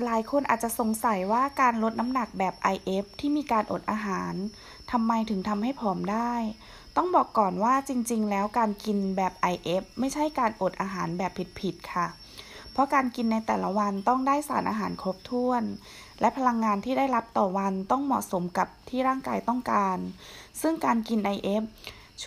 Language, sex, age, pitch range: Thai, female, 20-39, 200-255 Hz